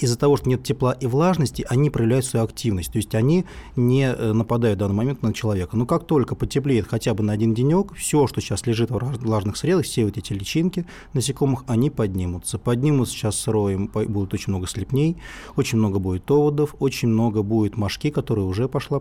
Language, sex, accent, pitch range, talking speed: Russian, male, native, 110-135 Hz, 195 wpm